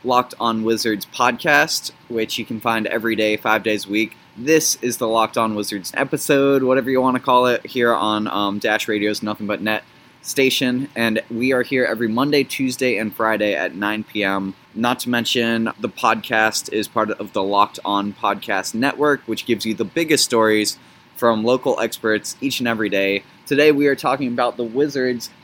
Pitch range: 110-135 Hz